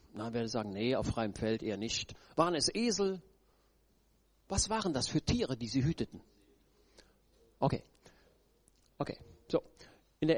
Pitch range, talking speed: 120-165 Hz, 145 wpm